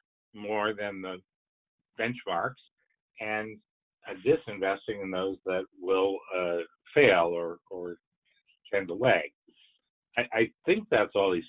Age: 60-79